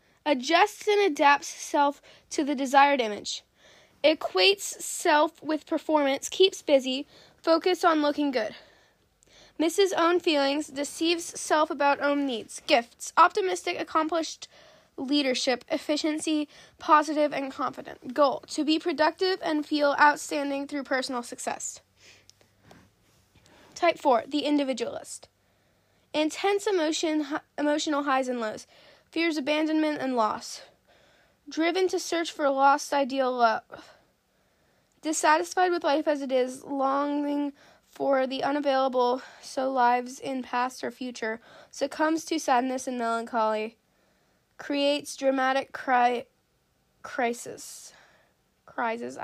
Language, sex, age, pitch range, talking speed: English, female, 10-29, 265-315 Hz, 110 wpm